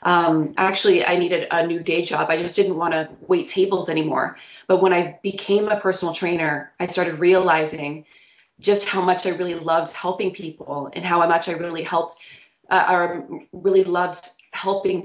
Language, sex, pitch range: English, female, 160-190 Hz